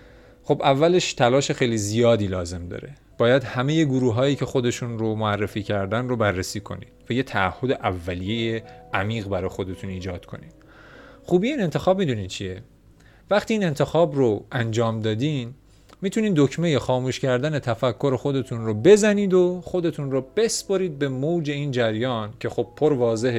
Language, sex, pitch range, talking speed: Persian, male, 105-140 Hz, 150 wpm